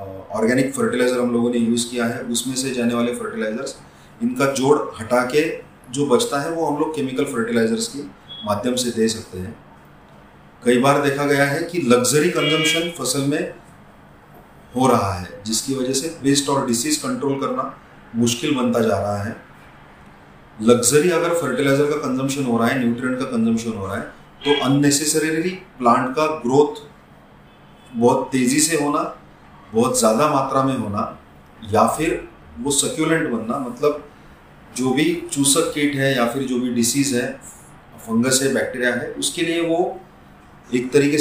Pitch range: 120-150 Hz